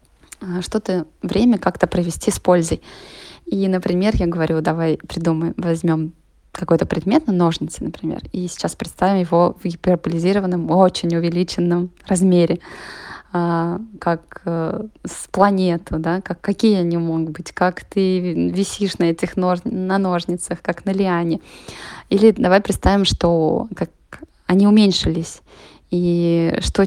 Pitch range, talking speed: 170-195 Hz, 125 wpm